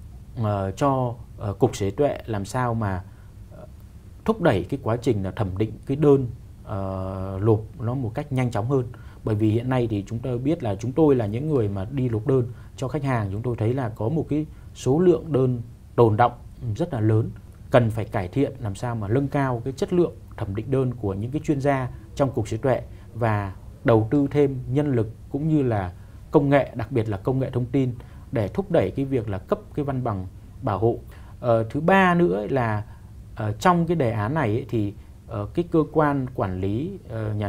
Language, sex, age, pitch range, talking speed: Vietnamese, male, 20-39, 100-130 Hz, 215 wpm